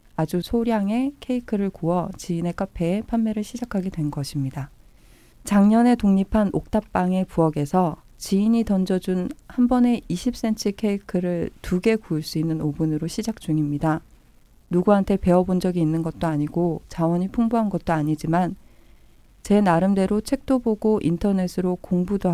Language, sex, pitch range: Korean, female, 165-205 Hz